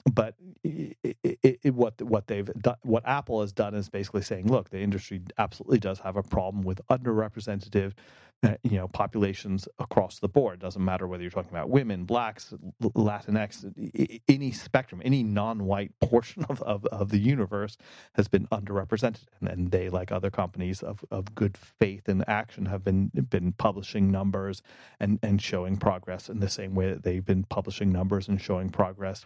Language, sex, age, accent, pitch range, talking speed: English, male, 30-49, American, 95-110 Hz, 175 wpm